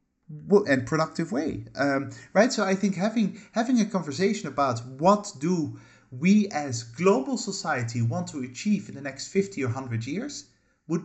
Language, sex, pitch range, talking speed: English, male, 115-160 Hz, 165 wpm